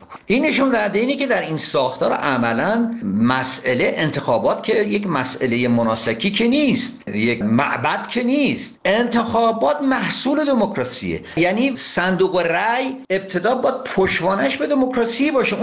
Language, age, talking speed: Persian, 50-69, 125 wpm